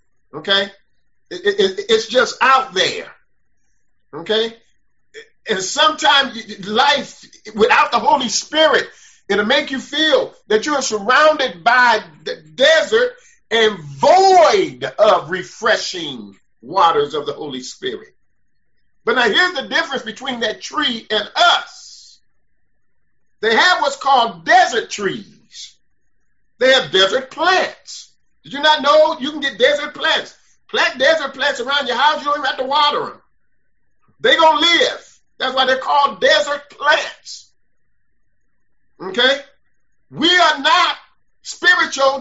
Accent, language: American, English